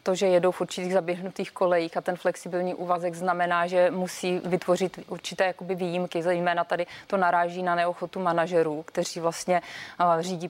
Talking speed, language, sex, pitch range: 160 wpm, Czech, female, 170-185 Hz